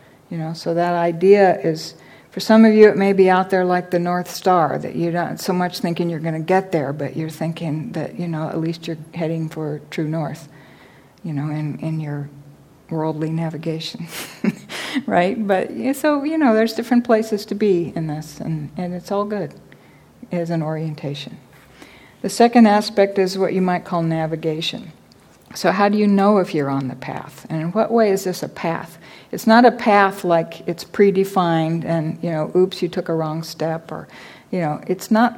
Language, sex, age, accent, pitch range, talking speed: English, female, 60-79, American, 160-195 Hz, 200 wpm